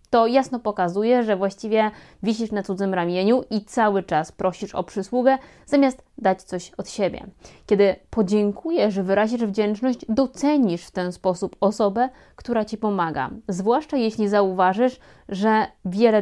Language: Polish